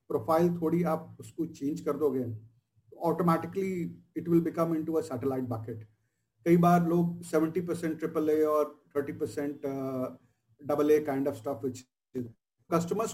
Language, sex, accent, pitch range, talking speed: Hindi, male, native, 140-175 Hz, 120 wpm